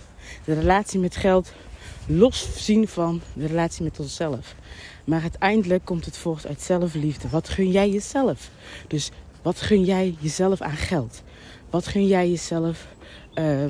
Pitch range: 145-185 Hz